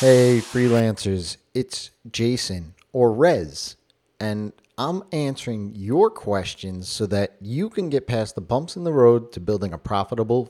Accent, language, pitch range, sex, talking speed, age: American, English, 100-125 Hz, male, 150 wpm, 30-49